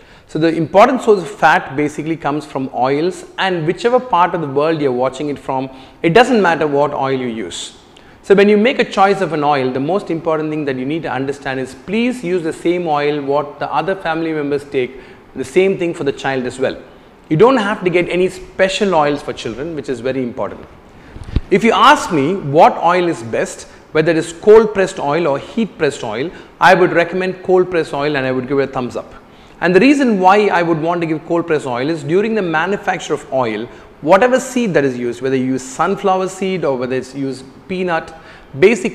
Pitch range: 140-190 Hz